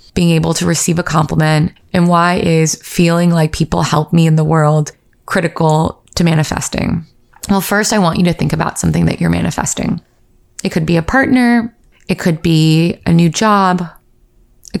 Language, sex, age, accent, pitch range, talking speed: English, female, 20-39, American, 170-215 Hz, 180 wpm